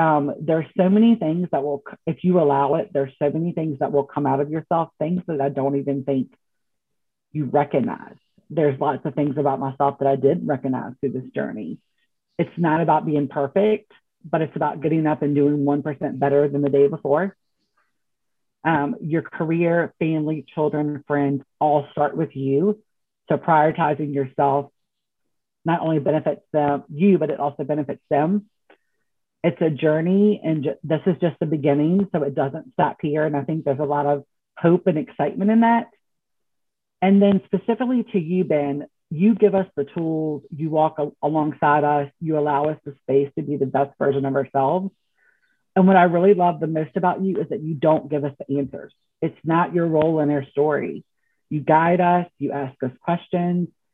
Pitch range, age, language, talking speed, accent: 145-170 Hz, 40-59, English, 185 wpm, American